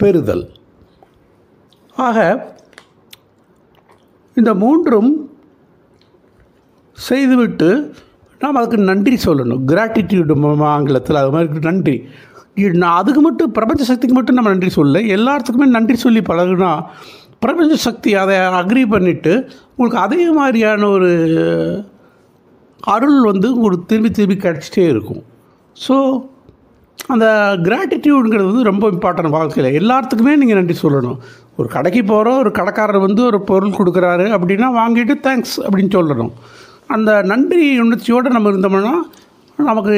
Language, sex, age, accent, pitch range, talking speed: Tamil, male, 60-79, native, 175-250 Hz, 110 wpm